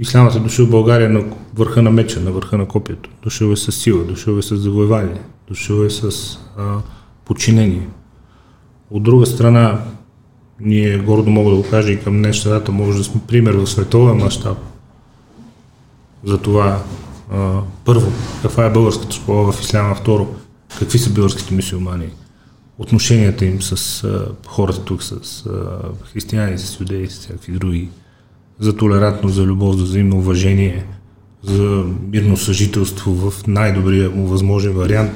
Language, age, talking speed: Bulgarian, 30-49, 150 wpm